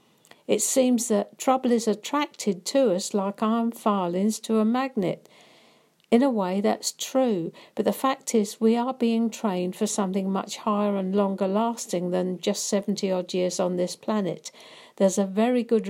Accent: British